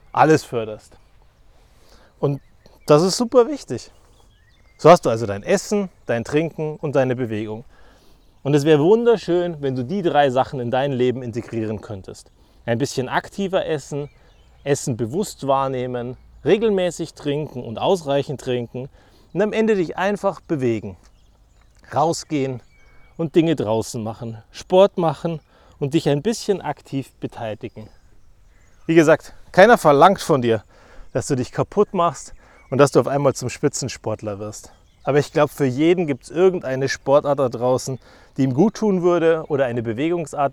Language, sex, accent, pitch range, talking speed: German, male, German, 115-170 Hz, 150 wpm